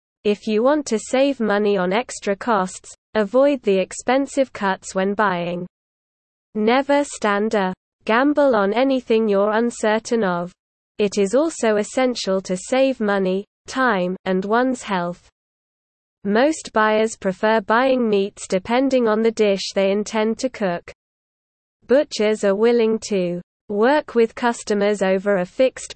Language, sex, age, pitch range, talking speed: English, female, 20-39, 195-245 Hz, 135 wpm